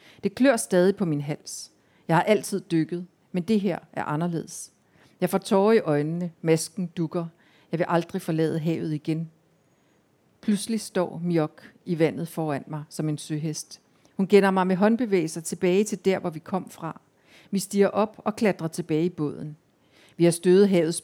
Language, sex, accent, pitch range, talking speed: Danish, female, native, 160-195 Hz, 175 wpm